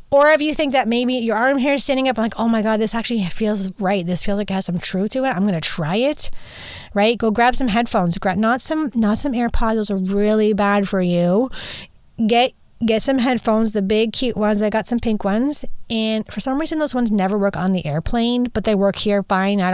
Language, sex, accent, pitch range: English, female, American, 200-245 Hz